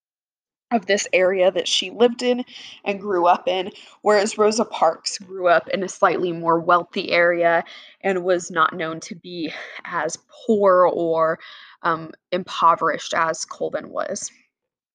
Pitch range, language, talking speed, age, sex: 170-210 Hz, English, 145 wpm, 20-39, female